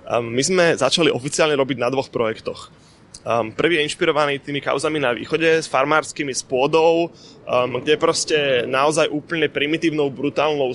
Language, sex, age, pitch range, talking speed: Slovak, male, 20-39, 135-160 Hz, 140 wpm